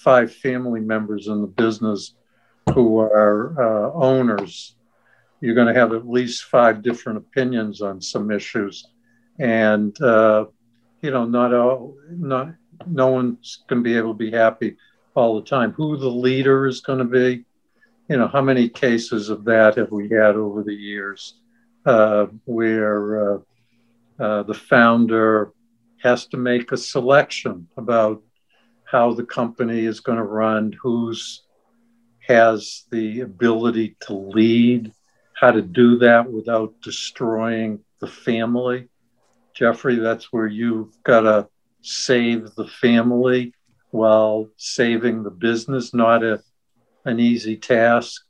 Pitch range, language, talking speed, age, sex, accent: 110-125 Hz, English, 135 wpm, 60-79, male, American